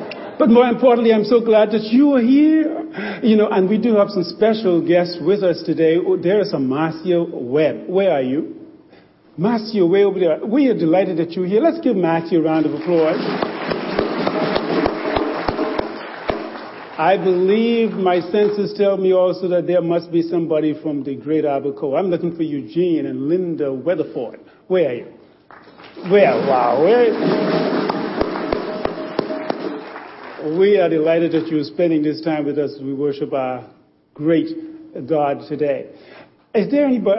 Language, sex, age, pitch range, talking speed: English, male, 50-69, 165-230 Hz, 155 wpm